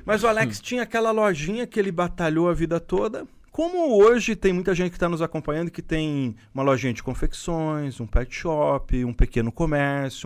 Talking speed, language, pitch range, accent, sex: 195 wpm, Portuguese, 125-185 Hz, Brazilian, male